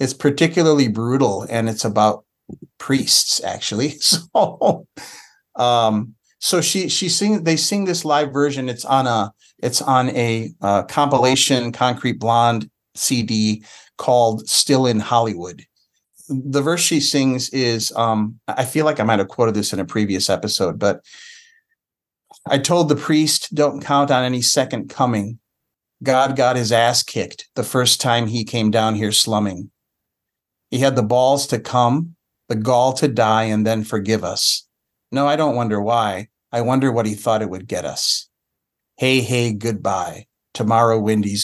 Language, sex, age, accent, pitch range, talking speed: English, male, 40-59, American, 115-180 Hz, 160 wpm